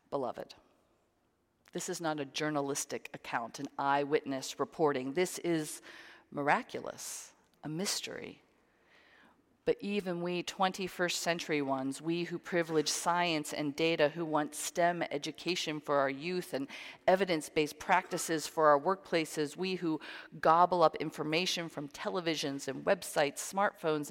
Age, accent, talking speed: 40-59, American, 125 wpm